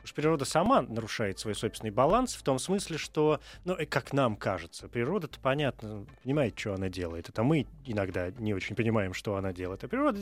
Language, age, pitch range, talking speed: Russian, 20-39, 105-140 Hz, 190 wpm